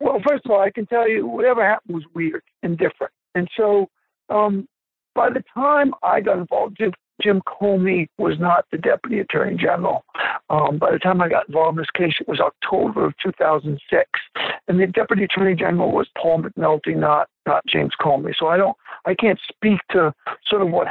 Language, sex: English, male